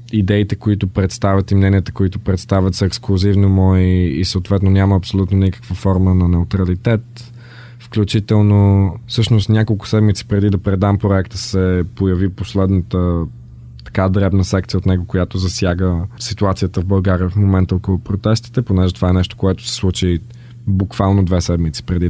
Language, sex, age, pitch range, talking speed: Bulgarian, male, 20-39, 95-110 Hz, 145 wpm